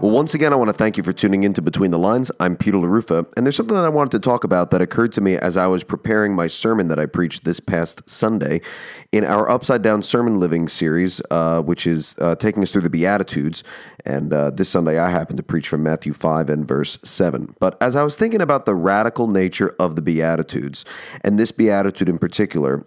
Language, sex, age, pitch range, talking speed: English, male, 40-59, 85-110 Hz, 235 wpm